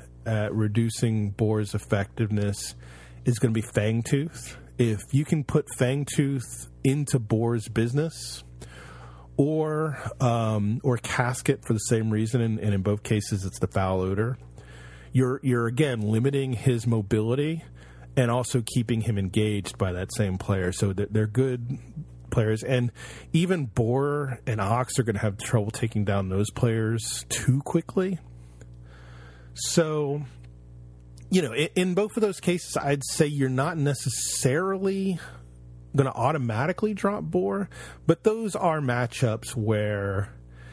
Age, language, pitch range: 40-59, English, 100-135 Hz